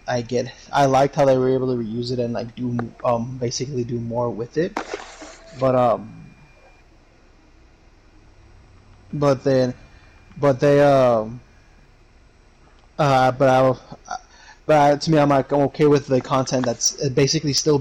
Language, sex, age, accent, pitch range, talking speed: English, male, 20-39, American, 115-135 Hz, 145 wpm